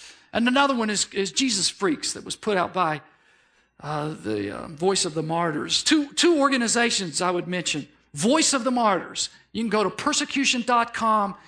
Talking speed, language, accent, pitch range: 180 wpm, English, American, 185-255 Hz